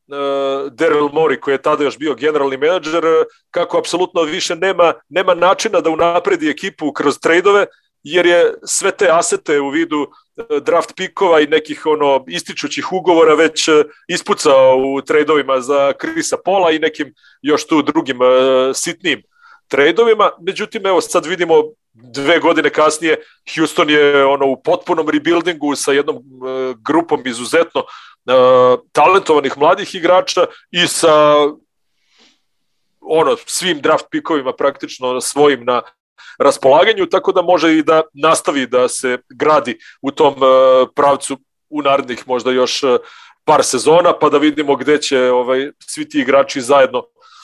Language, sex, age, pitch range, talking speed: Croatian, male, 40-59, 140-195 Hz, 140 wpm